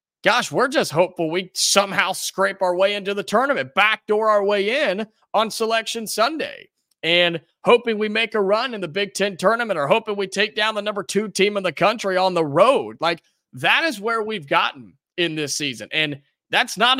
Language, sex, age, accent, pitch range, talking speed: English, male, 30-49, American, 175-230 Hz, 200 wpm